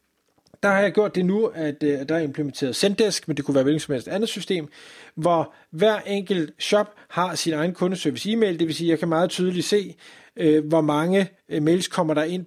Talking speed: 210 wpm